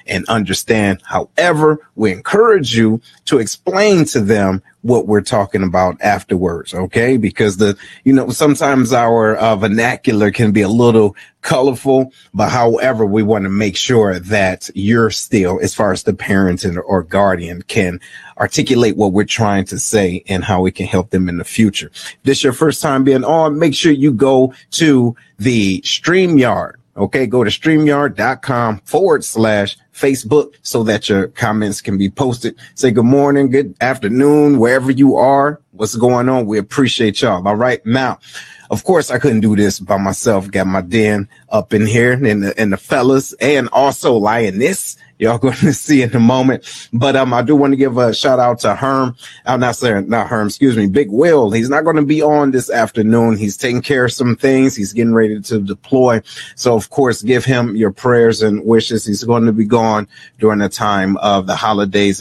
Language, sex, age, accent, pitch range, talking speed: English, male, 30-49, American, 100-130 Hz, 190 wpm